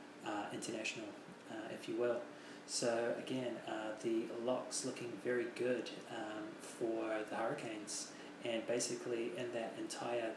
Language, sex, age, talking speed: English, male, 20-39, 135 wpm